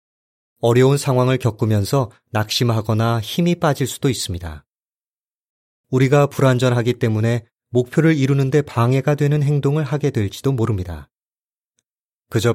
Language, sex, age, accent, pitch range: Korean, male, 30-49, native, 115-145 Hz